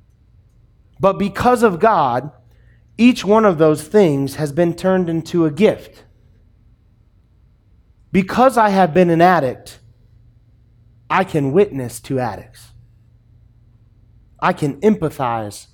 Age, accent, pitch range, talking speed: 30-49, American, 115-175 Hz, 110 wpm